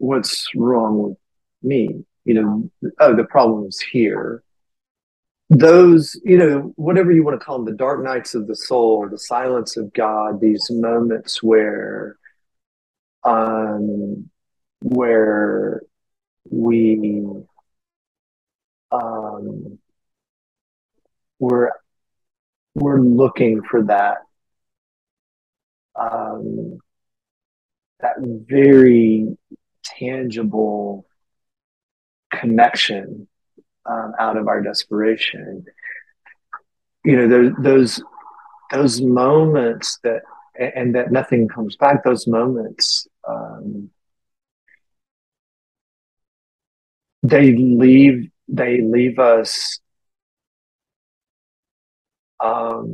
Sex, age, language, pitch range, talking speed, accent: male, 40-59, English, 110-130 Hz, 85 wpm, American